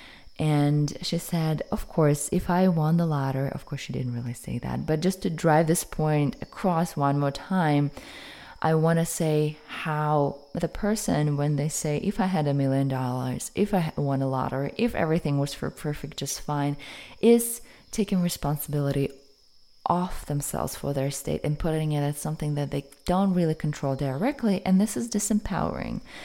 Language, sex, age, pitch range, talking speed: English, female, 20-39, 140-180 Hz, 180 wpm